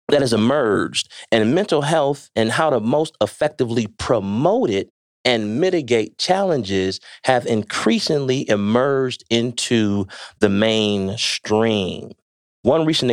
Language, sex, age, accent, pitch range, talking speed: English, male, 30-49, American, 105-145 Hz, 110 wpm